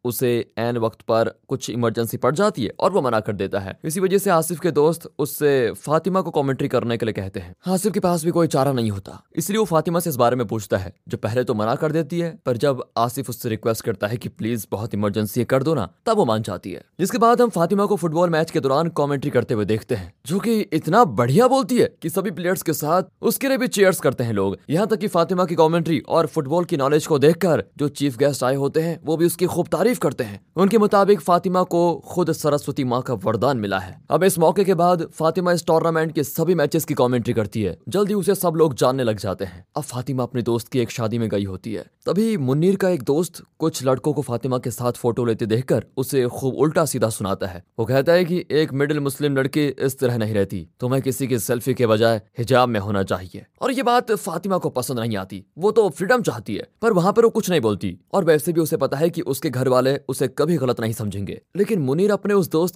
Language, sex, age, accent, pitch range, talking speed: Hindi, male, 20-39, native, 115-170 Hz, 205 wpm